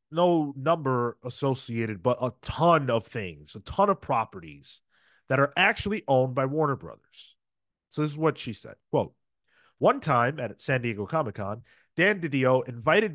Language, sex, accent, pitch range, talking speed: English, male, American, 120-165 Hz, 160 wpm